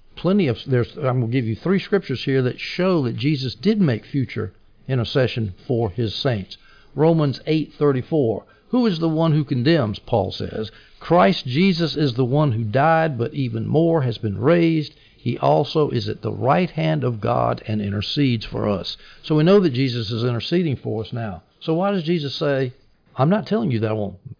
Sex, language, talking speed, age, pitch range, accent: male, English, 195 wpm, 60-79, 115-160 Hz, American